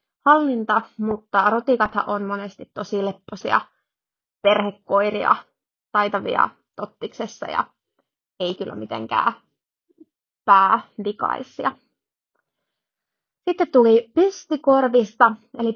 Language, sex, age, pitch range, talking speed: Finnish, female, 20-39, 200-255 Hz, 70 wpm